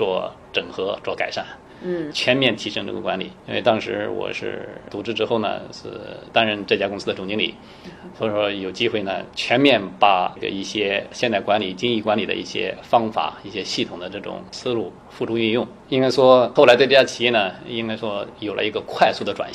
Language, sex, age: Chinese, male, 20-39